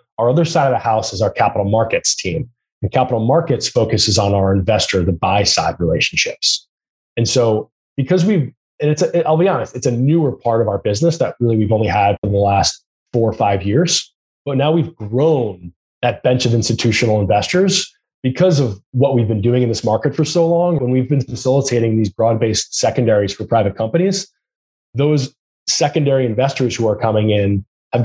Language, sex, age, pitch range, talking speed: English, male, 20-39, 110-145 Hz, 190 wpm